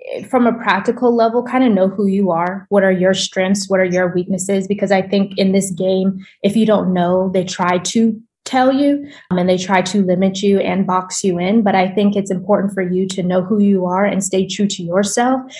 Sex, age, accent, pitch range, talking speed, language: female, 20-39, American, 180-210 Hz, 235 wpm, English